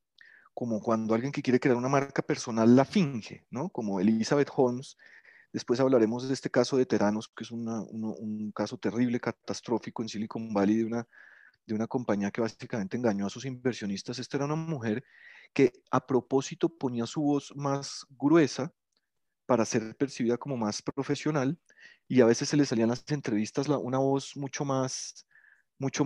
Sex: male